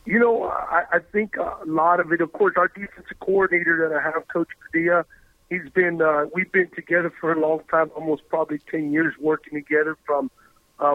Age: 50-69